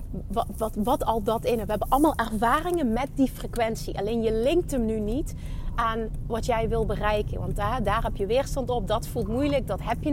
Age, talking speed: 30-49, 220 wpm